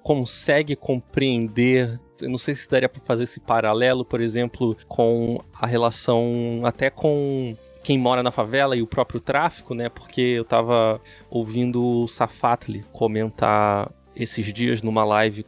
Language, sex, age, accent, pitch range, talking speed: Portuguese, male, 20-39, Brazilian, 115-130 Hz, 145 wpm